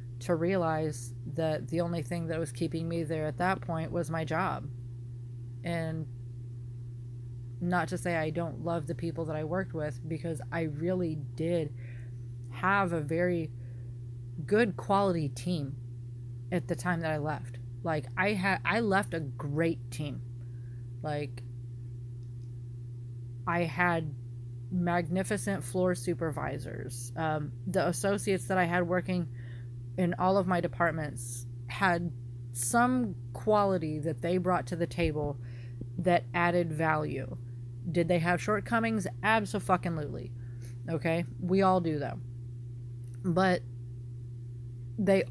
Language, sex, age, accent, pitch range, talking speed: English, female, 30-49, American, 120-175 Hz, 130 wpm